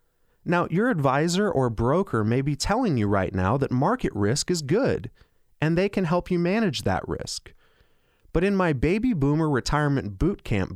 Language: English